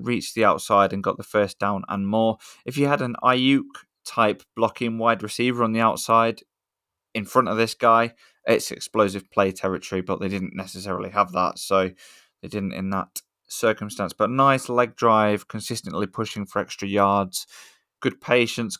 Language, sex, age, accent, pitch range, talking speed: English, male, 20-39, British, 100-115 Hz, 170 wpm